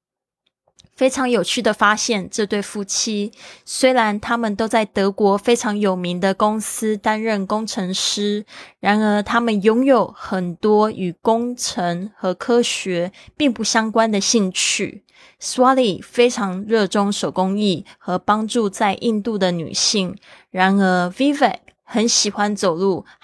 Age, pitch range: 20-39, 190-230 Hz